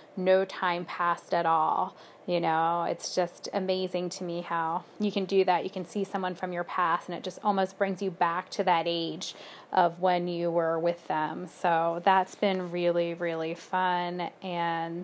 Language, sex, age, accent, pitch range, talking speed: English, female, 10-29, American, 170-190 Hz, 190 wpm